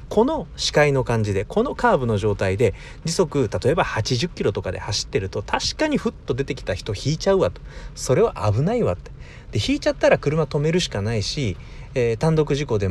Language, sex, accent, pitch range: Japanese, male, native, 105-165 Hz